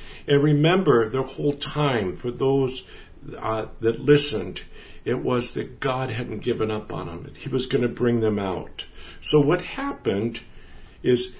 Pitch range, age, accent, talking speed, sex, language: 115-145 Hz, 60-79, American, 160 wpm, male, English